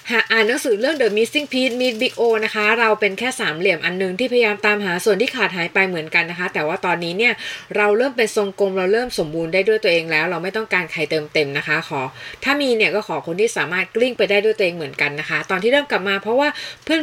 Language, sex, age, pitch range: Thai, female, 20-39, 180-240 Hz